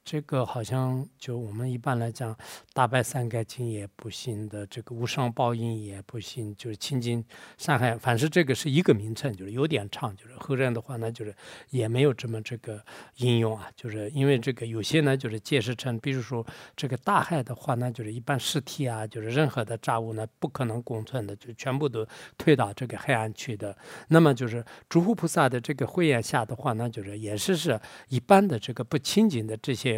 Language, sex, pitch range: English, male, 110-140 Hz